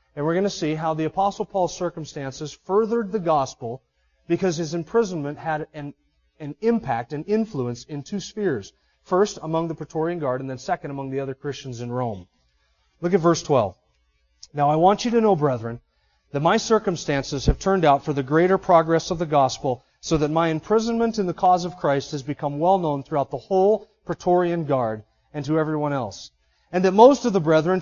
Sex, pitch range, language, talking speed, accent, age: male, 140-190 Hz, English, 195 wpm, American, 40-59